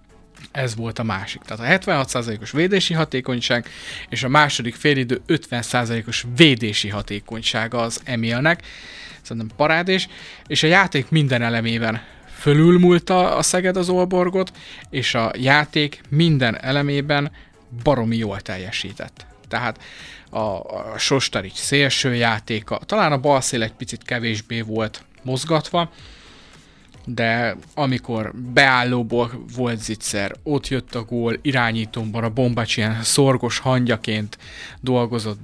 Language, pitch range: Hungarian, 115-140 Hz